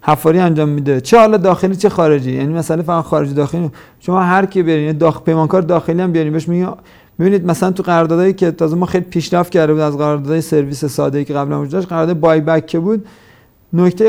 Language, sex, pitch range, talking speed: Persian, male, 150-190 Hz, 215 wpm